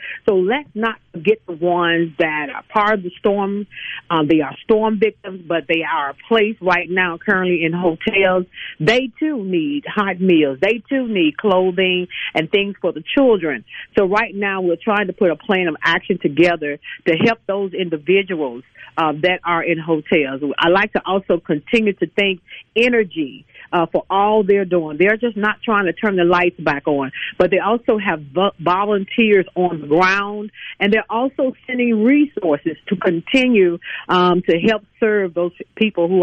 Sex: female